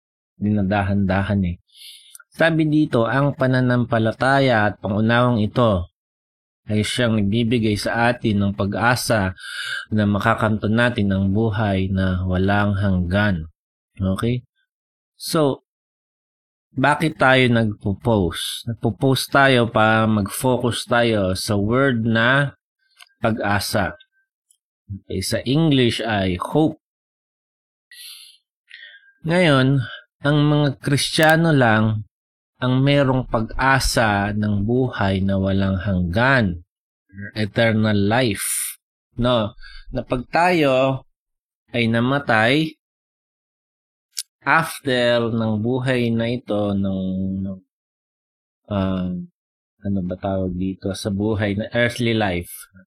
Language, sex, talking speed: Filipino, male, 90 wpm